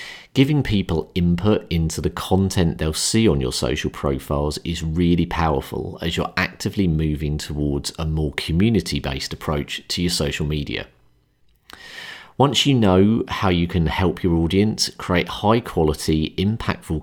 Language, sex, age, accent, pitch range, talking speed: English, male, 40-59, British, 75-95 Hz, 140 wpm